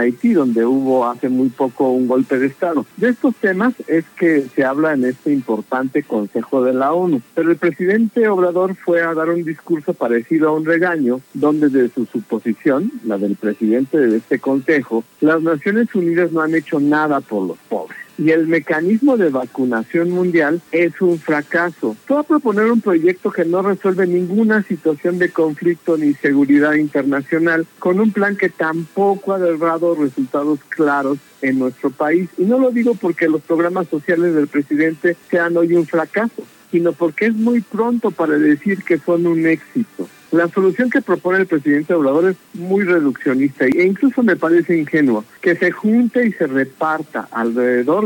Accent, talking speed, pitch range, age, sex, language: Mexican, 175 wpm, 145-190 Hz, 60-79, male, Spanish